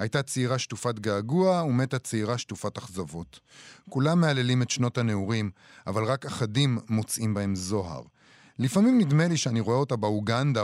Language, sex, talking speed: Hebrew, male, 145 wpm